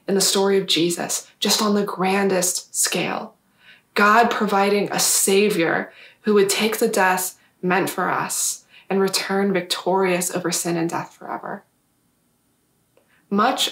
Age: 20-39